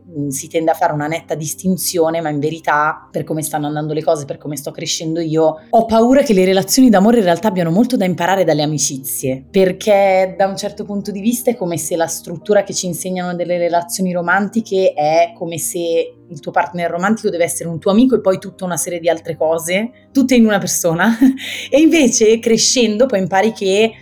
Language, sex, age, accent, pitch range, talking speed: Italian, female, 30-49, native, 160-195 Hz, 205 wpm